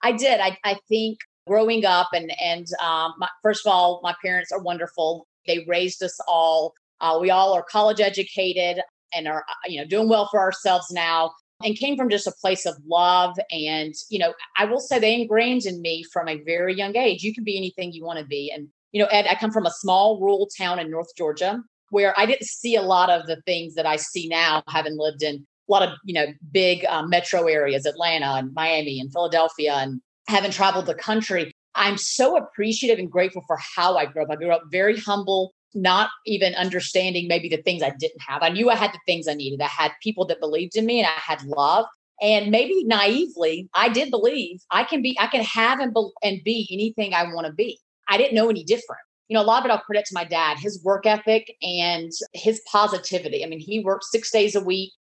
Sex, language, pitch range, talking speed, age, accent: female, English, 165-215 Hz, 230 wpm, 40-59, American